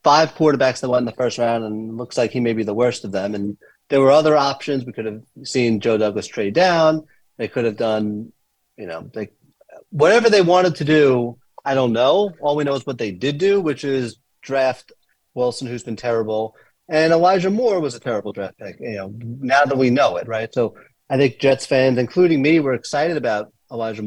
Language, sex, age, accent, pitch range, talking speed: English, male, 30-49, American, 120-145 Hz, 220 wpm